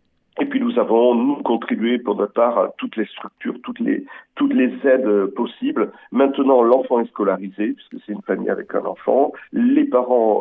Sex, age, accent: male, 50-69, French